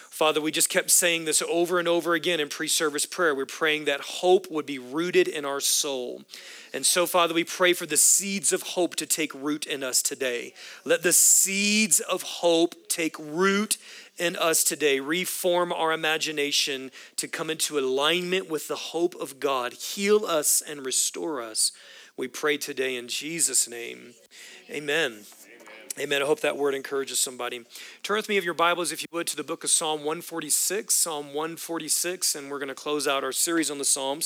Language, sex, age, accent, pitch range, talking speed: English, male, 40-59, American, 145-180 Hz, 185 wpm